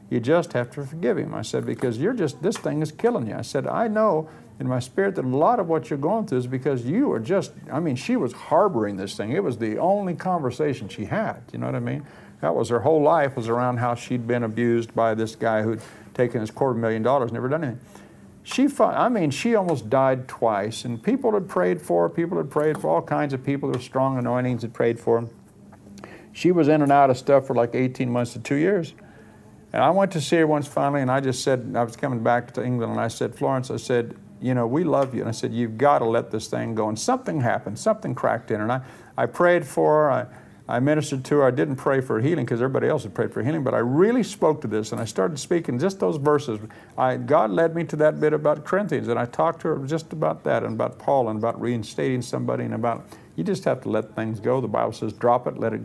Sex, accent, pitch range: male, American, 115-155 Hz